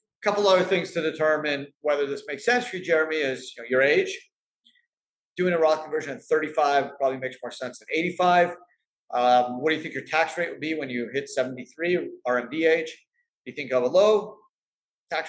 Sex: male